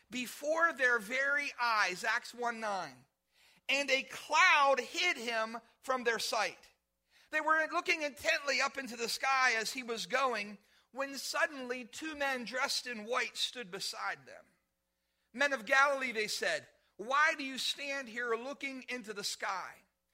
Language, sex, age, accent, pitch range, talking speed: English, male, 40-59, American, 215-275 Hz, 150 wpm